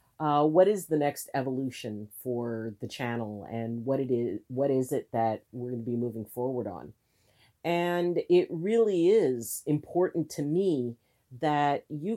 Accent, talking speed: American, 165 wpm